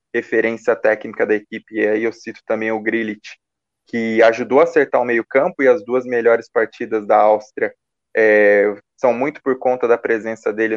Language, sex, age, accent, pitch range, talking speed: Portuguese, male, 20-39, Brazilian, 110-155 Hz, 180 wpm